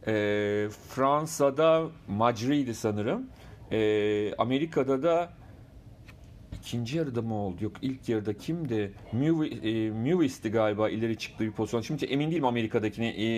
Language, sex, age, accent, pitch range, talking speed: Turkish, male, 40-59, native, 110-150 Hz, 125 wpm